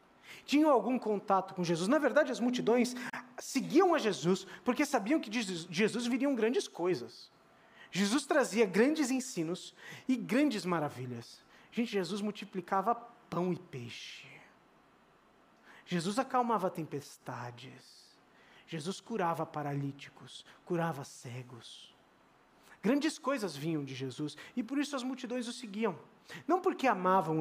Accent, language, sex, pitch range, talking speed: Brazilian, Portuguese, male, 170-245 Hz, 125 wpm